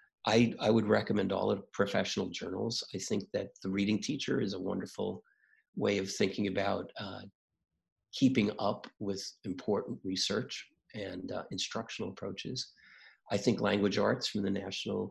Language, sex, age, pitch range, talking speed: English, male, 50-69, 100-120 Hz, 150 wpm